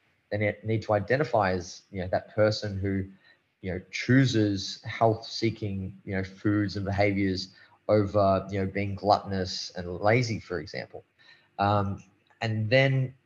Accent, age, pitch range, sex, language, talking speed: Australian, 20-39, 95-110 Hz, male, English, 145 wpm